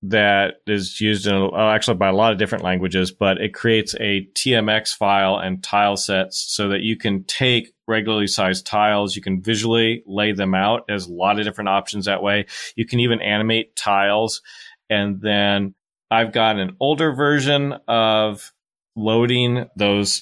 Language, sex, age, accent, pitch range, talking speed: English, male, 30-49, American, 100-115 Hz, 170 wpm